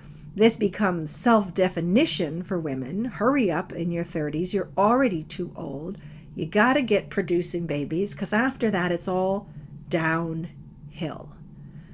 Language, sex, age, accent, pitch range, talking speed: English, female, 50-69, American, 160-205 Hz, 130 wpm